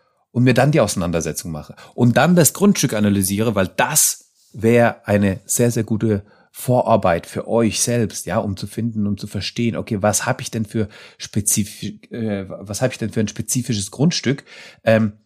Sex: male